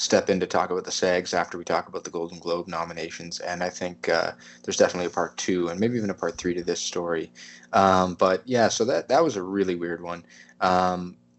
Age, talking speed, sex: 20-39, 235 wpm, male